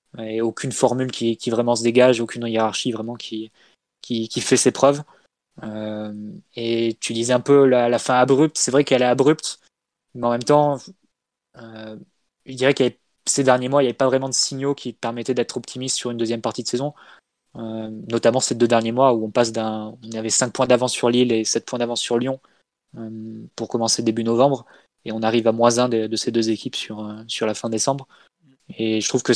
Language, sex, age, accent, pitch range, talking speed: French, male, 20-39, French, 115-125 Hz, 225 wpm